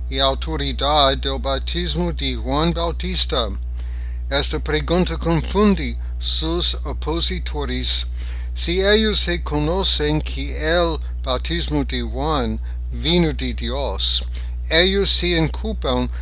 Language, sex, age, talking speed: English, male, 60-79, 95 wpm